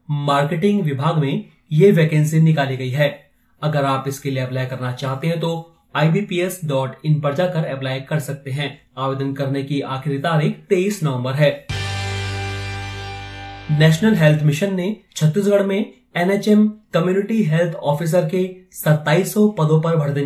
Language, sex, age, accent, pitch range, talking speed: Hindi, male, 30-49, native, 140-165 Hz, 140 wpm